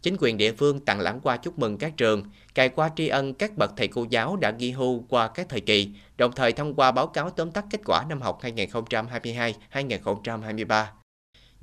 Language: Vietnamese